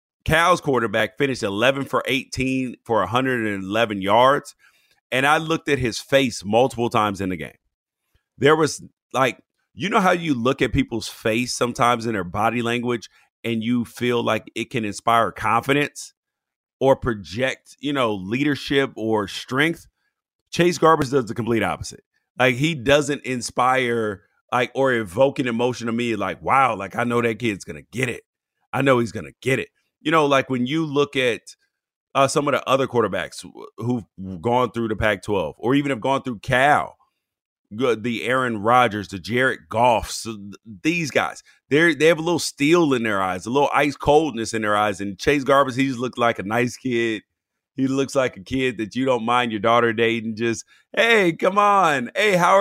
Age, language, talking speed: 30-49, English, 185 wpm